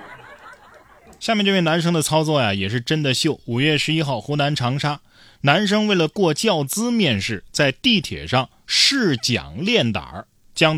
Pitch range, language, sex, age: 105-150 Hz, Chinese, male, 20-39